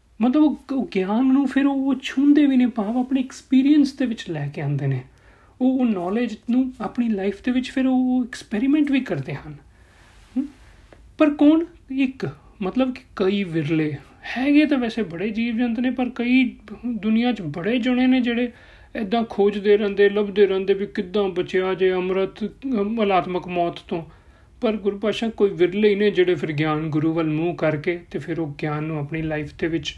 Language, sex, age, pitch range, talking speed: Punjabi, male, 40-59, 180-255 Hz, 155 wpm